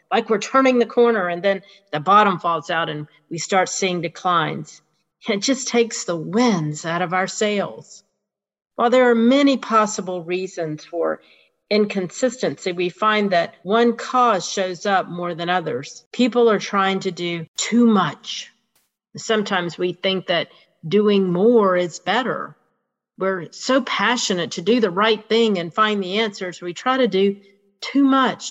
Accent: American